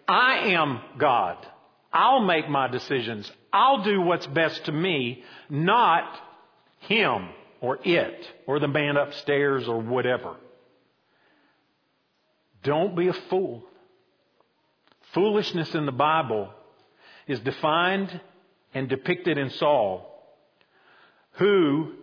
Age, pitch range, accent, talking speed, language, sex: 50-69, 135-180 Hz, American, 105 wpm, English, male